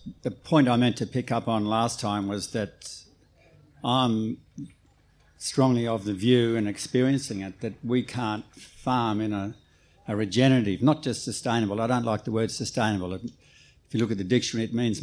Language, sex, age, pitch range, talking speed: English, male, 60-79, 105-120 Hz, 180 wpm